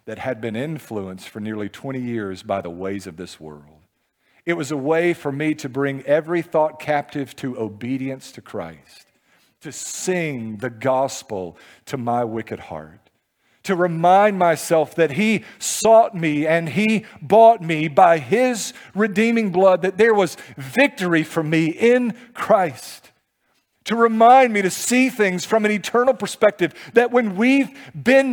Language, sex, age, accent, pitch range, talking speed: English, male, 50-69, American, 145-220 Hz, 155 wpm